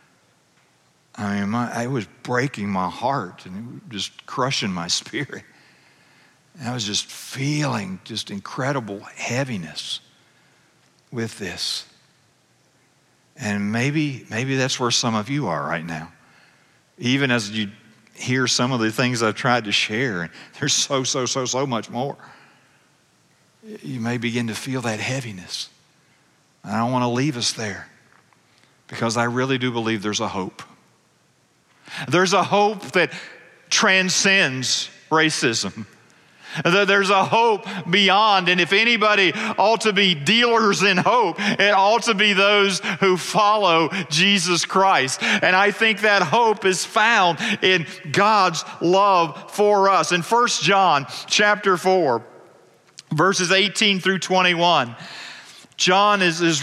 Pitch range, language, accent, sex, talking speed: 125-195 Hz, English, American, male, 135 wpm